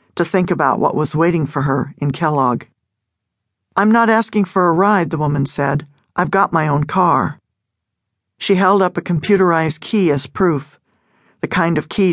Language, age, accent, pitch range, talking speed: English, 50-69, American, 140-175 Hz, 180 wpm